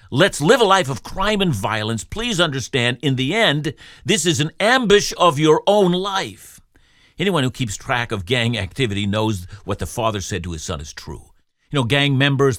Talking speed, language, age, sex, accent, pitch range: 200 wpm, English, 50-69, male, American, 115-170 Hz